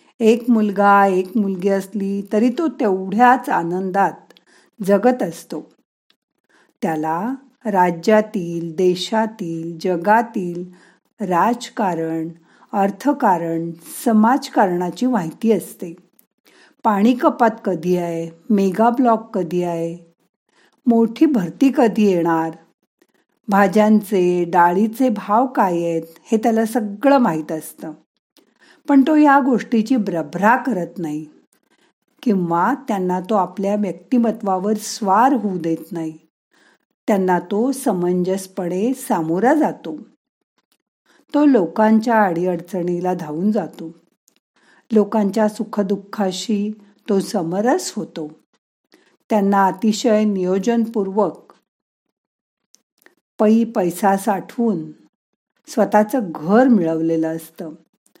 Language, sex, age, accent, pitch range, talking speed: Marathi, female, 50-69, native, 180-230 Hz, 85 wpm